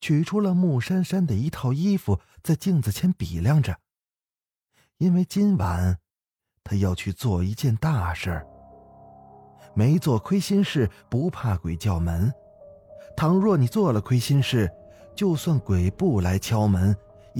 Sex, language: male, Chinese